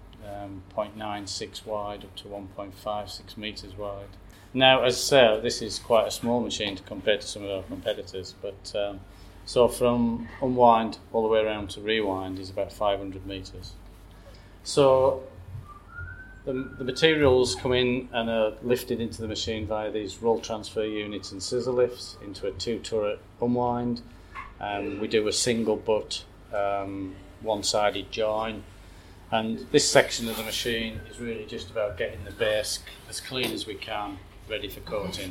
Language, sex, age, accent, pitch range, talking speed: English, male, 30-49, British, 95-115 Hz, 160 wpm